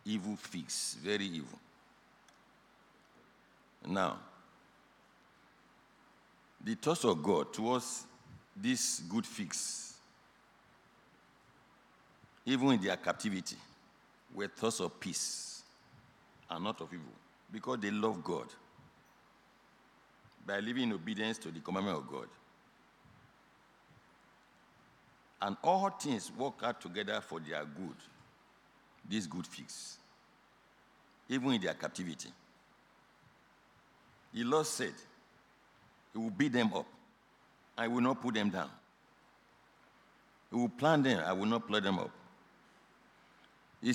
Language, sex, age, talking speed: English, male, 60-79, 110 wpm